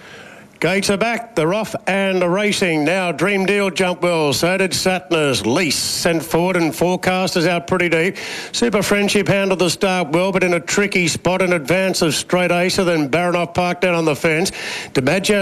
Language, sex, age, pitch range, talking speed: English, male, 50-69, 170-190 Hz, 185 wpm